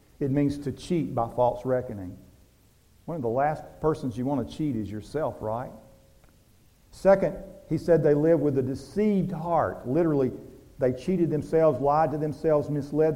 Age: 50-69